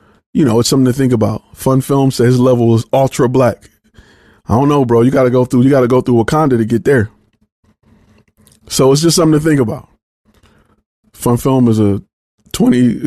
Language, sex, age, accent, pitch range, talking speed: English, male, 20-39, American, 120-155 Hz, 200 wpm